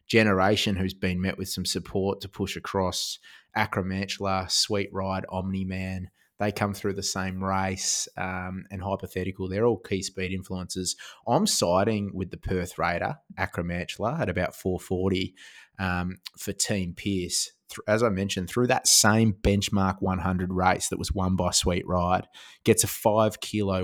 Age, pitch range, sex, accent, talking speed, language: 20-39, 90-100 Hz, male, Australian, 155 wpm, English